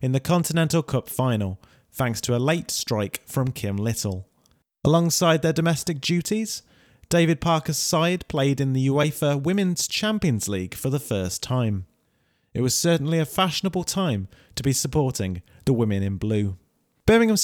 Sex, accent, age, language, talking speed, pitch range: male, British, 30-49, English, 155 wpm, 110-160 Hz